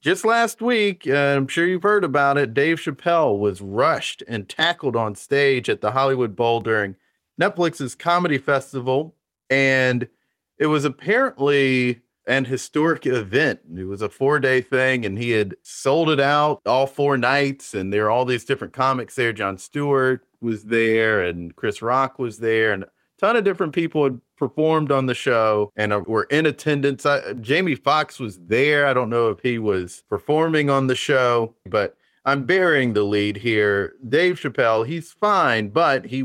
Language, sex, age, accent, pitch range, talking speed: English, male, 30-49, American, 115-150 Hz, 175 wpm